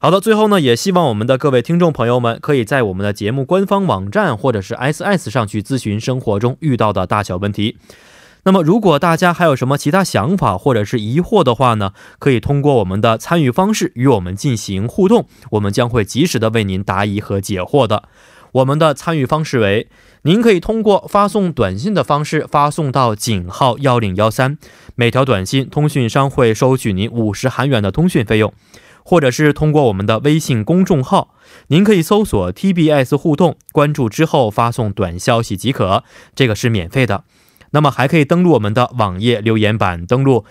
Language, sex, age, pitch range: Korean, male, 20-39, 110-155 Hz